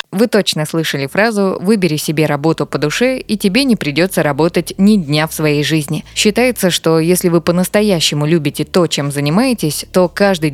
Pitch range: 155-195 Hz